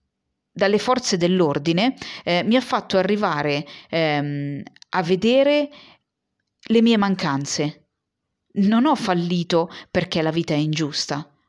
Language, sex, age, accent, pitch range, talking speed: Italian, female, 40-59, native, 160-210 Hz, 110 wpm